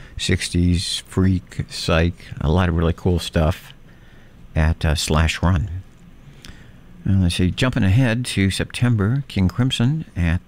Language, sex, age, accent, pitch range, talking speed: English, male, 60-79, American, 80-100 Hz, 135 wpm